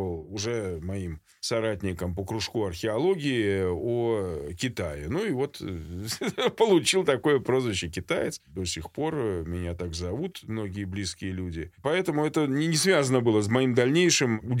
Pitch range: 90-125 Hz